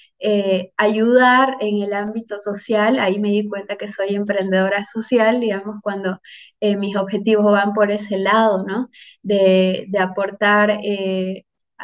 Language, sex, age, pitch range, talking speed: Spanish, female, 20-39, 195-225 Hz, 140 wpm